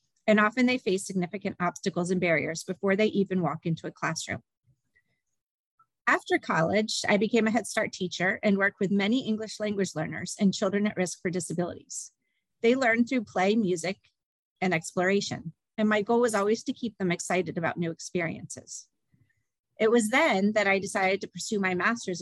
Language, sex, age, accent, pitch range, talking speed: English, female, 30-49, American, 175-225 Hz, 175 wpm